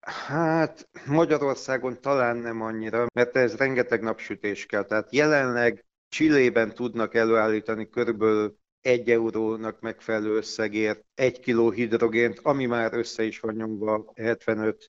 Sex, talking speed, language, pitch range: male, 120 wpm, Hungarian, 105-120 Hz